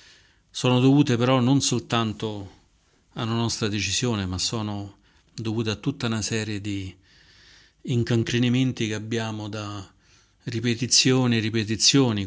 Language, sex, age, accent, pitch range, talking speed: Italian, male, 40-59, native, 95-115 Hz, 115 wpm